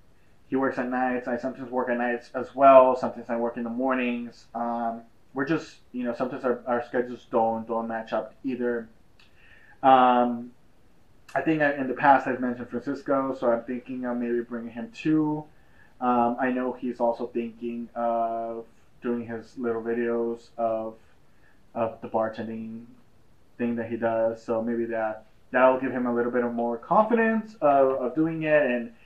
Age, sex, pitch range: 20-39, male, 115-130 Hz